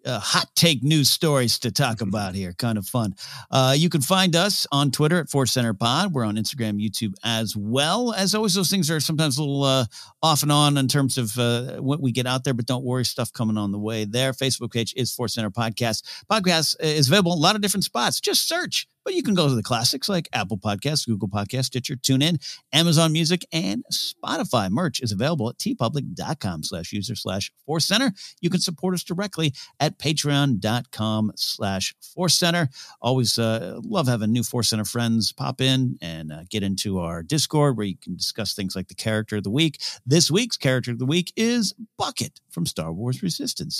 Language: English